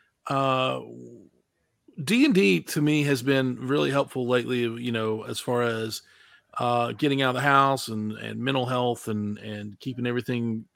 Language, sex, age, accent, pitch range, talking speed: English, male, 40-59, American, 120-145 Hz, 165 wpm